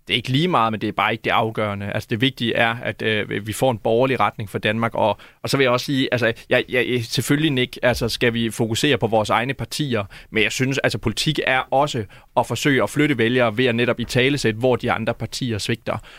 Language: Danish